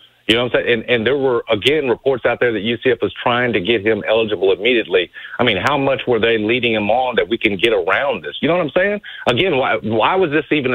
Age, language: 50-69, English